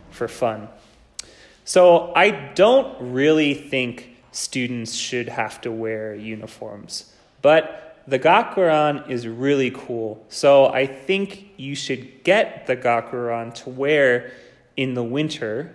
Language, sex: Japanese, male